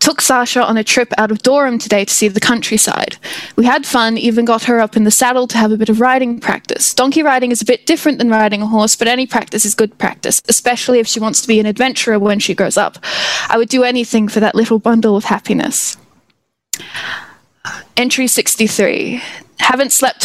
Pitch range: 210-245 Hz